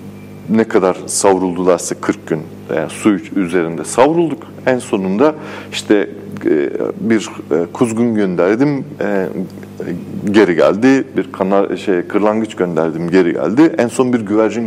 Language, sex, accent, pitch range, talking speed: Turkish, male, native, 95-125 Hz, 115 wpm